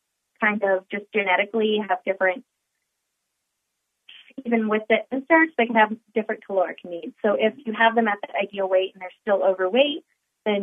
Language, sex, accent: English, female, American